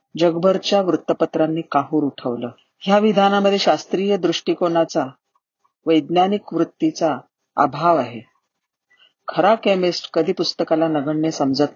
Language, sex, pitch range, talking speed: Marathi, female, 145-175 Hz, 90 wpm